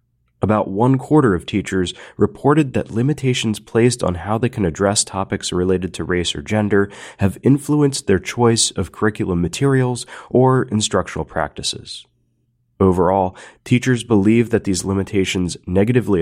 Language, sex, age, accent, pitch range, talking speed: English, male, 30-49, American, 95-120 Hz, 135 wpm